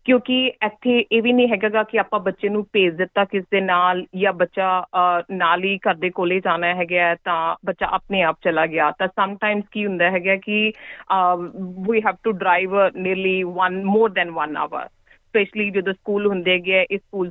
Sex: female